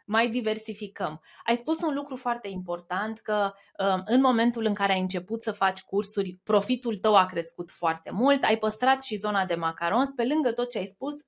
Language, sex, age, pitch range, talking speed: Romanian, female, 20-39, 200-270 Hz, 190 wpm